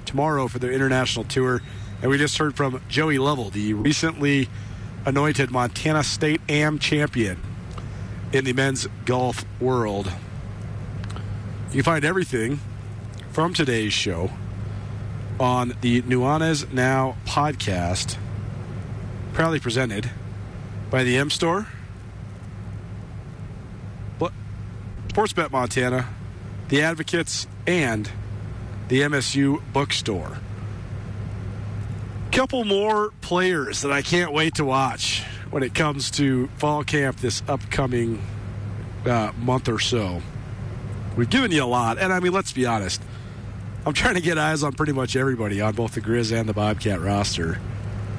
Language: English